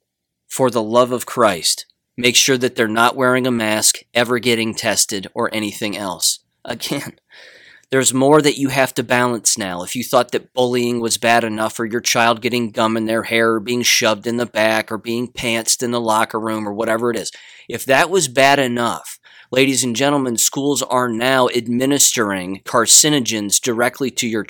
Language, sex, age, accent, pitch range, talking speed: English, male, 30-49, American, 110-125 Hz, 190 wpm